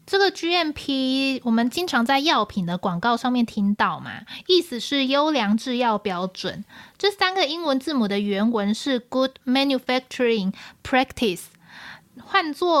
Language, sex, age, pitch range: Chinese, female, 20-39, 210-285 Hz